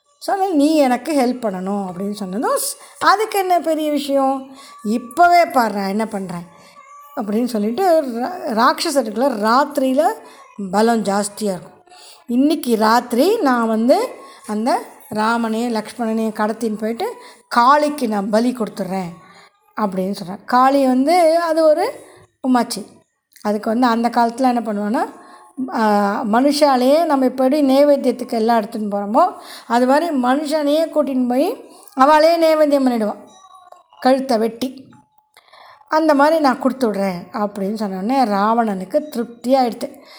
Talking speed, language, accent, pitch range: 110 wpm, Tamil, native, 215-295 Hz